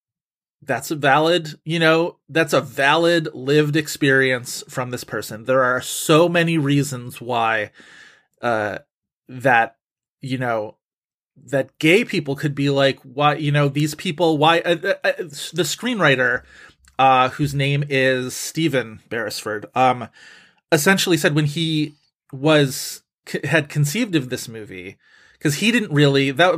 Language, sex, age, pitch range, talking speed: English, male, 30-49, 130-160 Hz, 140 wpm